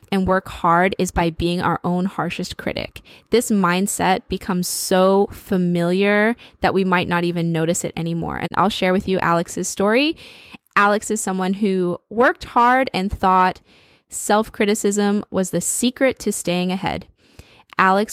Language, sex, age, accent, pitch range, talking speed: English, female, 10-29, American, 185-230 Hz, 150 wpm